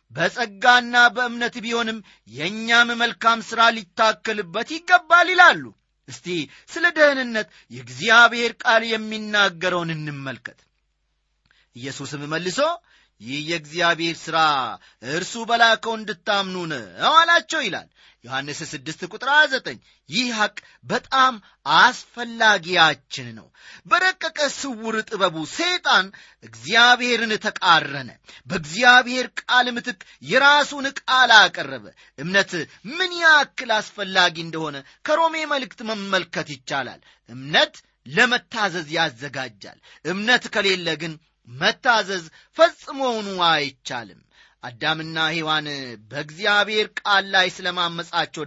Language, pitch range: Amharic, 155-245 Hz